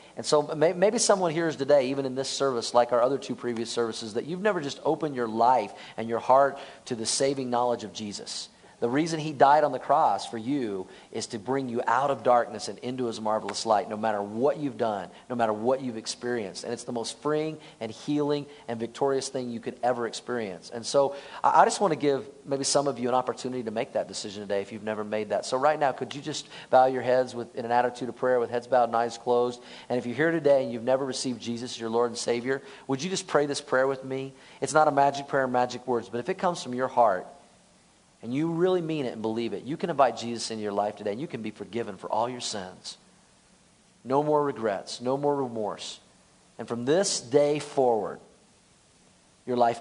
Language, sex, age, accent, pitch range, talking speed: English, male, 40-59, American, 115-140 Hz, 235 wpm